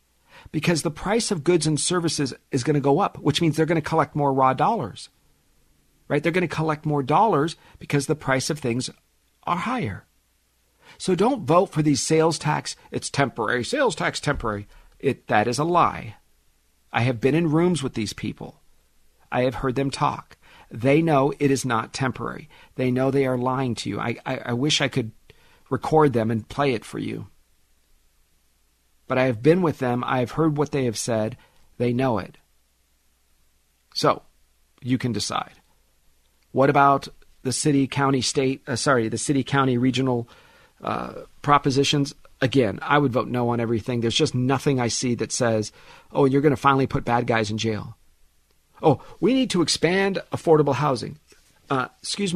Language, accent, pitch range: English, American, 110-150 Hz